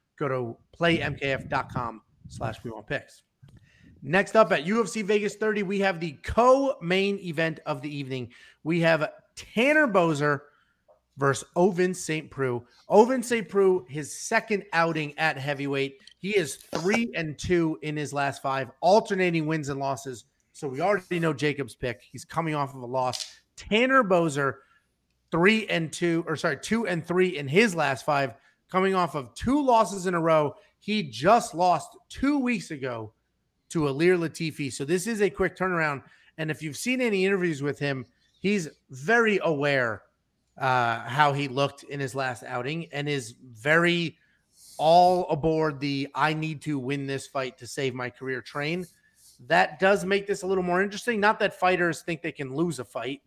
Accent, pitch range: American, 135-185 Hz